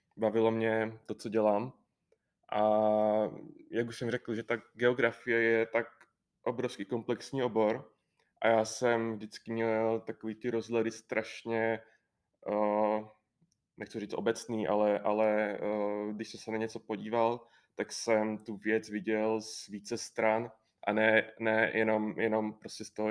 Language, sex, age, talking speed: Czech, male, 20-39, 140 wpm